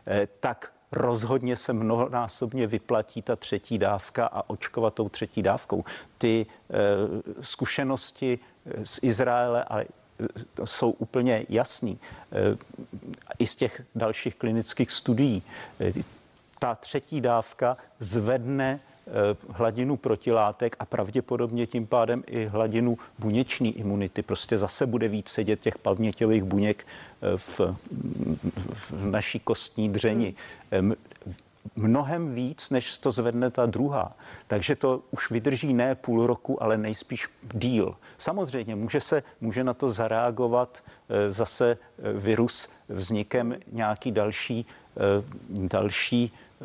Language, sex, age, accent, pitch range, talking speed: Czech, male, 50-69, native, 110-125 Hz, 105 wpm